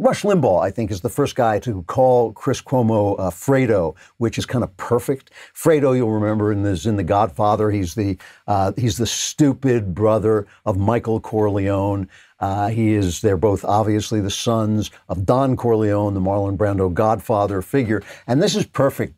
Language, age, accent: English, 60-79, American